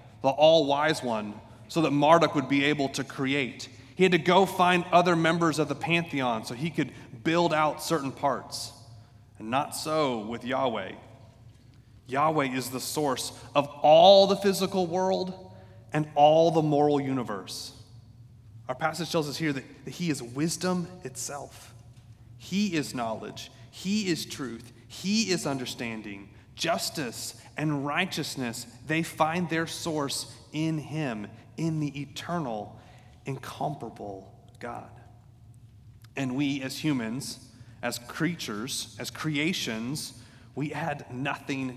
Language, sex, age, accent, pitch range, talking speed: English, male, 30-49, American, 120-155 Hz, 135 wpm